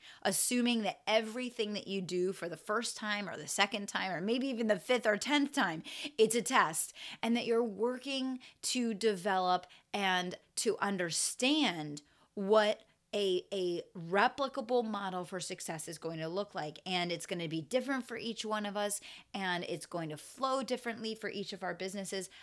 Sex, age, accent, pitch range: female, 30-49, American, 180-235 Hz